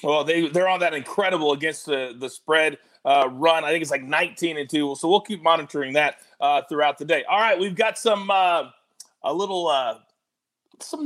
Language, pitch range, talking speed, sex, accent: English, 170-250 Hz, 205 wpm, male, American